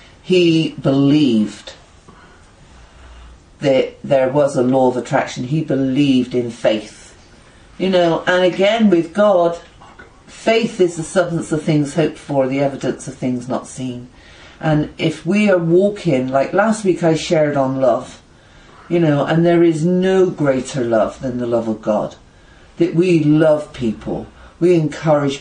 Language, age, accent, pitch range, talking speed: English, 50-69, British, 125-175 Hz, 150 wpm